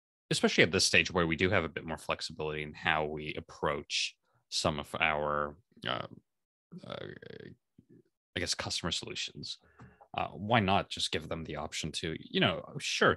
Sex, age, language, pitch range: male, 20-39, English, 75-95 Hz